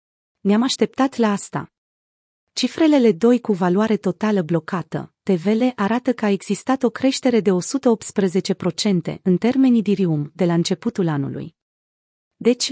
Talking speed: 125 wpm